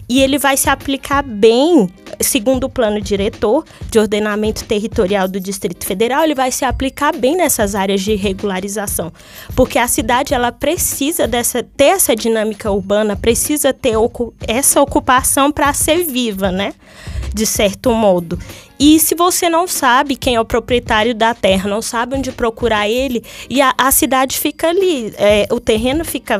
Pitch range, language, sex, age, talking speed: 220-275 Hz, Portuguese, female, 20-39, 160 wpm